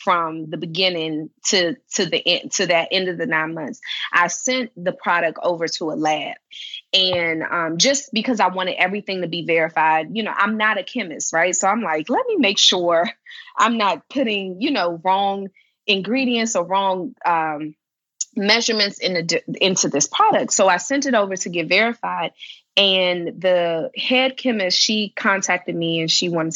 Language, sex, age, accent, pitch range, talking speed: English, female, 20-39, American, 180-255 Hz, 180 wpm